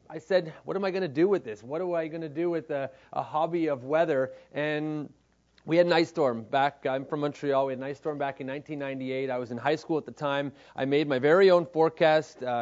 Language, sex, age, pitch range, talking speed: English, male, 30-49, 135-160 Hz, 260 wpm